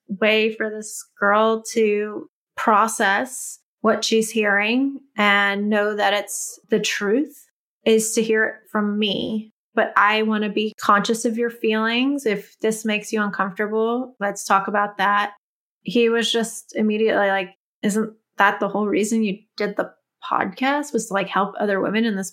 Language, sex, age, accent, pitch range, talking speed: English, female, 20-39, American, 205-230 Hz, 165 wpm